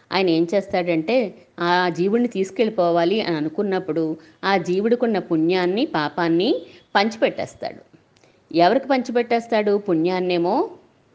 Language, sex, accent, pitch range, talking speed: Telugu, female, native, 165-230 Hz, 90 wpm